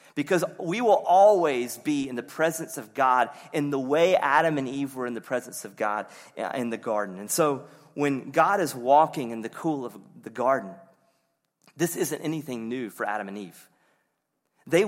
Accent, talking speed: American, 185 wpm